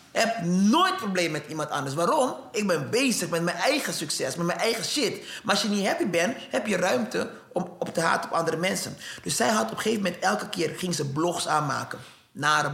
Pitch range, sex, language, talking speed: 150-205 Hz, male, Dutch, 230 wpm